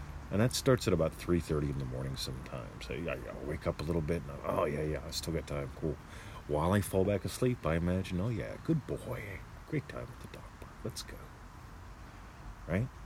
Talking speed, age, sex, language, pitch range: 210 wpm, 40-59, male, English, 75-100 Hz